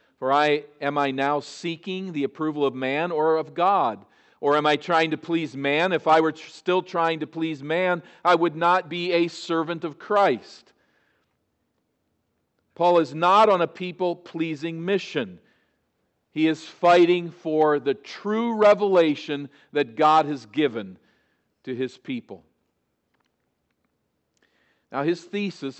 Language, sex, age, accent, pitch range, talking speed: English, male, 50-69, American, 135-170 Hz, 135 wpm